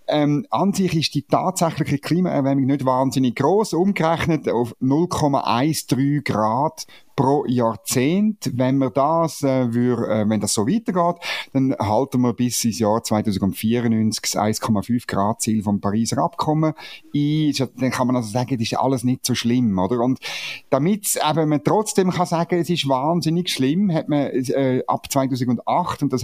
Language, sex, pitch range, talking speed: German, male, 120-160 Hz, 160 wpm